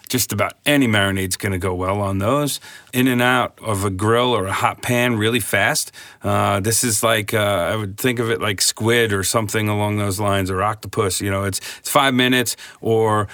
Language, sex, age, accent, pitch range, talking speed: English, male, 40-59, American, 100-120 Hz, 215 wpm